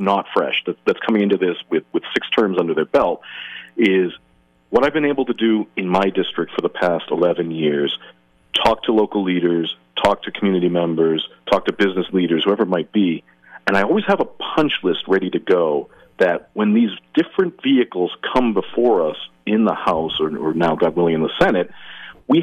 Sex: male